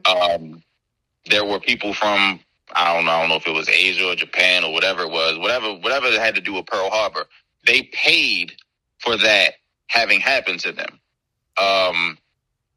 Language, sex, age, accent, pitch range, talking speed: English, male, 20-39, American, 95-120 Hz, 185 wpm